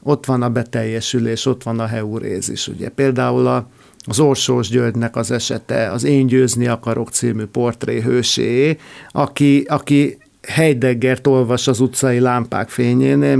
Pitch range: 115-140 Hz